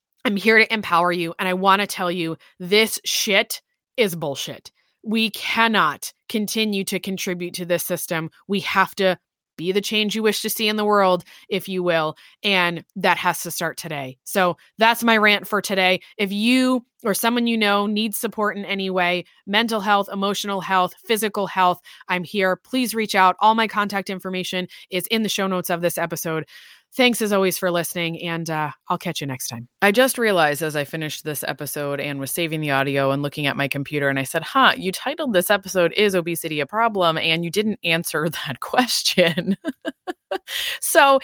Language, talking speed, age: English, 195 wpm, 20-39